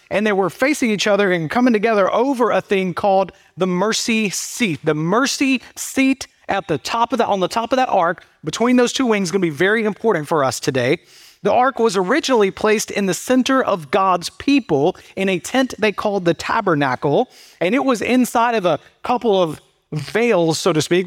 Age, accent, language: 30-49, American, English